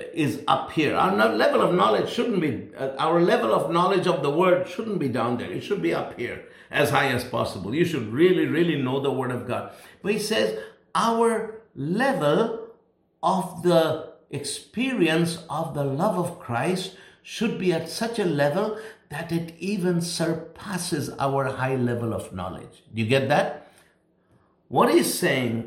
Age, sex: 60-79, male